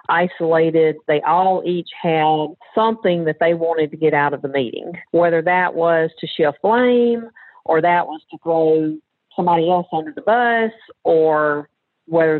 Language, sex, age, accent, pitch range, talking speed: English, female, 40-59, American, 150-180 Hz, 160 wpm